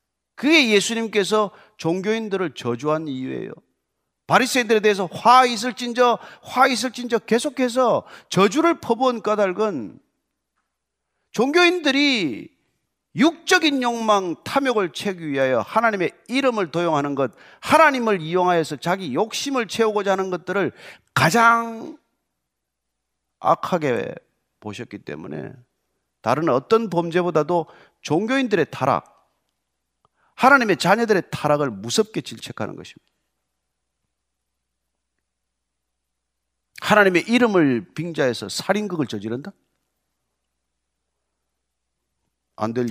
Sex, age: male, 40-59